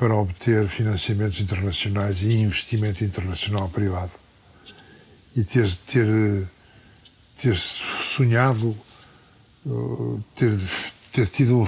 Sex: male